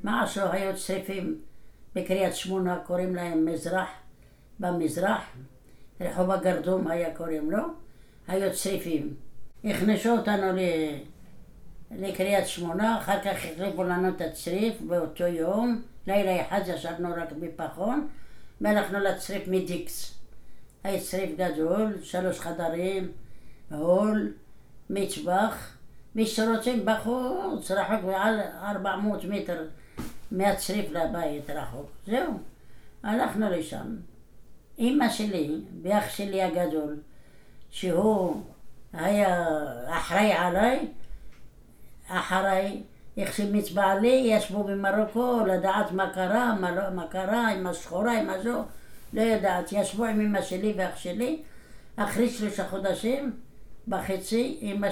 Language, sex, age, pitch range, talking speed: Hebrew, female, 60-79, 175-210 Hz, 100 wpm